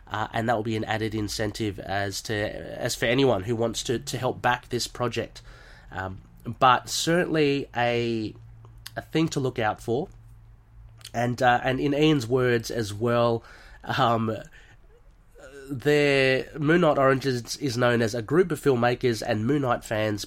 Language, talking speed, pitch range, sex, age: English, 165 wpm, 110-130 Hz, male, 30-49